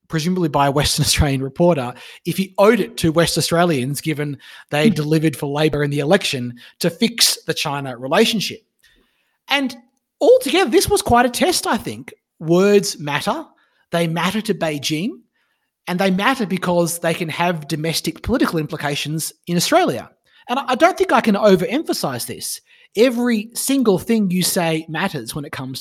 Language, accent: English, Australian